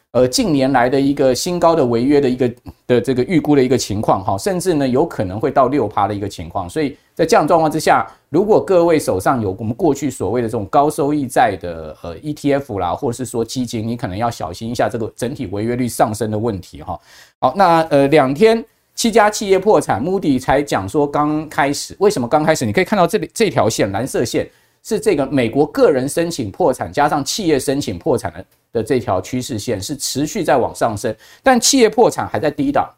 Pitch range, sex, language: 115-160 Hz, male, Chinese